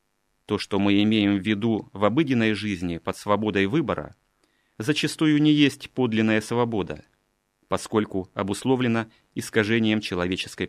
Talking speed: 120 wpm